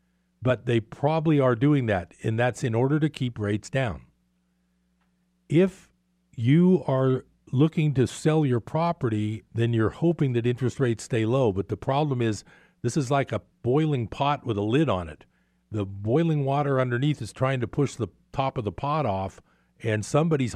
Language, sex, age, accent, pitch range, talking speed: English, male, 50-69, American, 105-140 Hz, 180 wpm